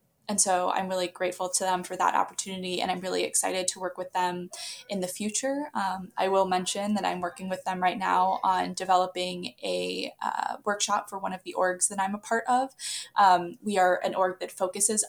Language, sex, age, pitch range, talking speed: English, female, 10-29, 180-205 Hz, 215 wpm